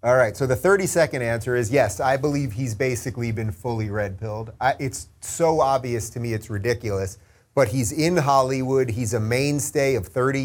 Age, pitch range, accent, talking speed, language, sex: 30-49, 115-140 Hz, American, 190 wpm, English, male